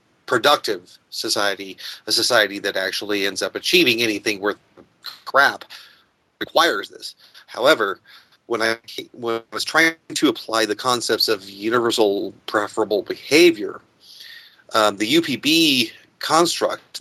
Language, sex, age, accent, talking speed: English, male, 30-49, American, 115 wpm